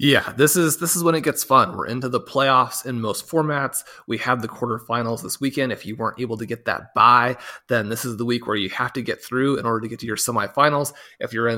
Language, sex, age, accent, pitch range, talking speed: English, male, 30-49, American, 120-150 Hz, 265 wpm